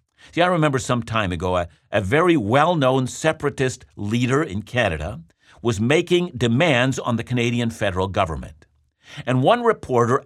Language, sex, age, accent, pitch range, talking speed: English, male, 60-79, American, 105-155 Hz, 145 wpm